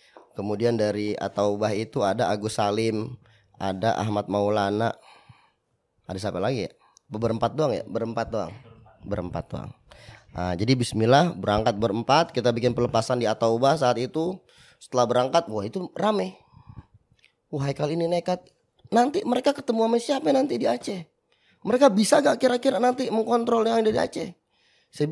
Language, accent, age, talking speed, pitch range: Indonesian, native, 20-39, 145 wpm, 120-185 Hz